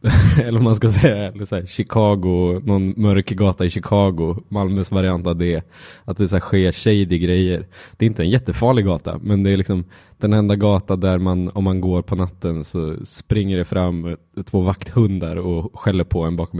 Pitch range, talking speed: 90-100 Hz, 200 wpm